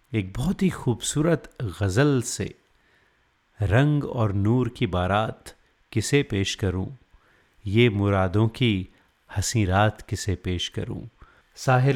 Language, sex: Hindi, male